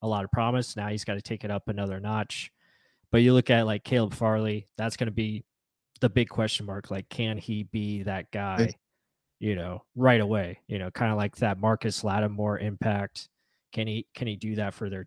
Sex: male